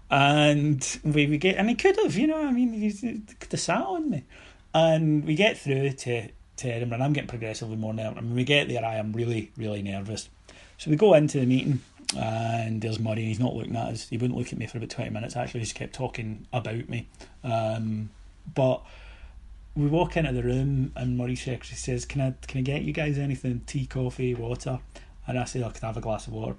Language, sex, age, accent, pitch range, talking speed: English, male, 30-49, British, 110-140 Hz, 240 wpm